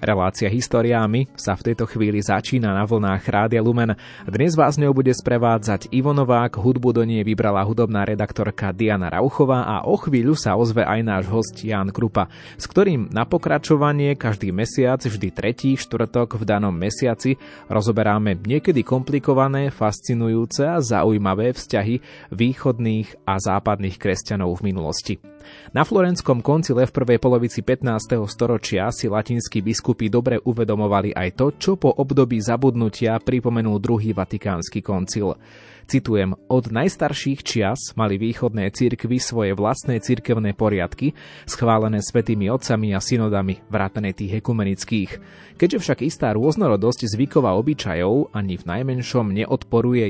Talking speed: 135 wpm